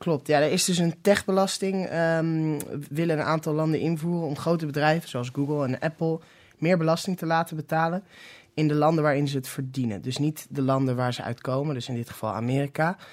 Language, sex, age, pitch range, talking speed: Dutch, male, 20-39, 135-165 Hz, 195 wpm